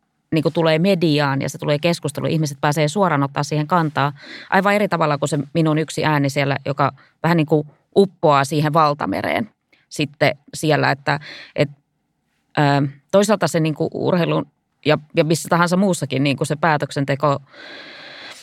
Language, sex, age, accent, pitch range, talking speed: Finnish, female, 20-39, native, 140-160 Hz, 145 wpm